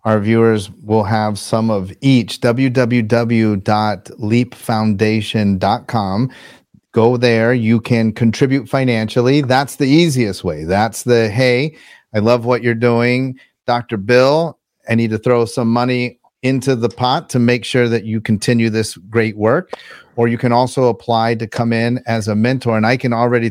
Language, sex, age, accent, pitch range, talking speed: English, male, 40-59, American, 110-125 Hz, 155 wpm